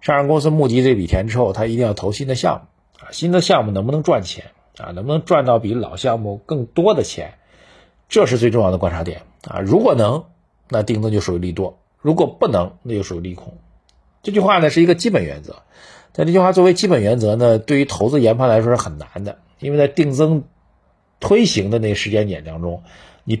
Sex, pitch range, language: male, 100-140 Hz, Chinese